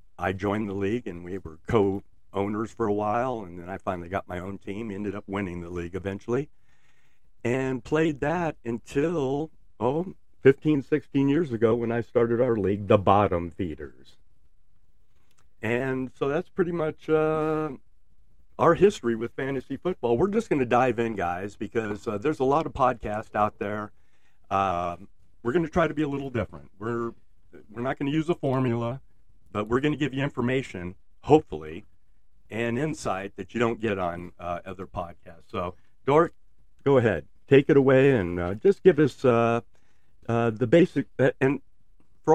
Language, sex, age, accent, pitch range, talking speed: English, male, 60-79, American, 95-130 Hz, 175 wpm